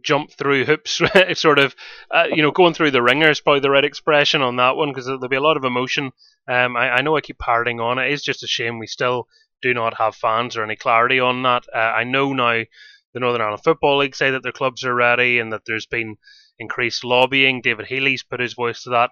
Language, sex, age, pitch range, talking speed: English, male, 20-39, 115-140 Hz, 250 wpm